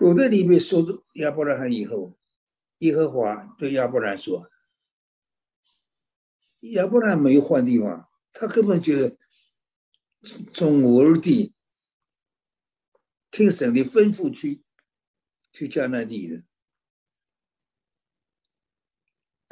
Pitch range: 130-220 Hz